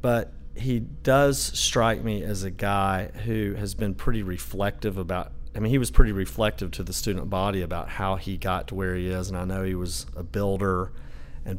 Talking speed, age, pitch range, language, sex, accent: 210 wpm, 40-59, 80-115 Hz, English, male, American